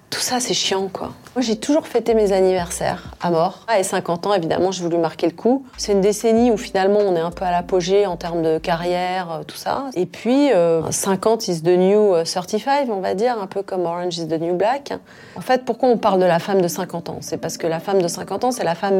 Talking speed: 255 wpm